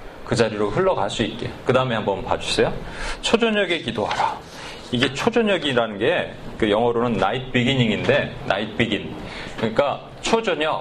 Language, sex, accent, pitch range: Korean, male, native, 115-175 Hz